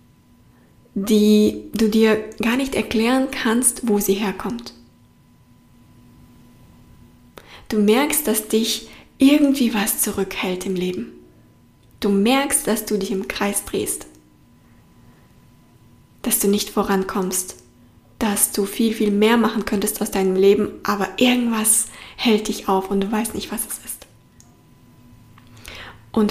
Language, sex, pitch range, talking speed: German, female, 195-230 Hz, 125 wpm